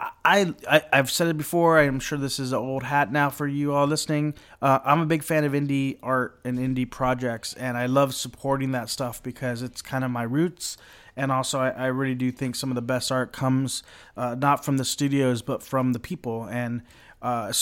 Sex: male